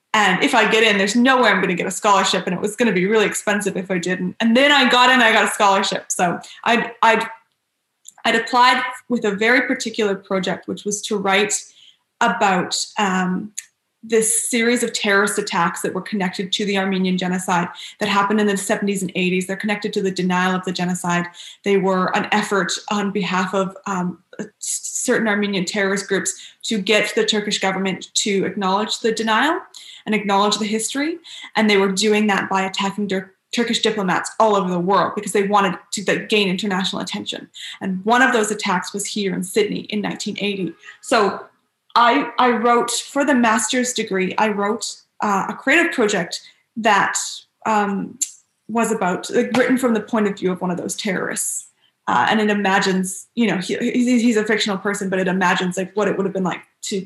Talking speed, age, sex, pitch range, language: 195 wpm, 20-39, female, 190-225 Hz, English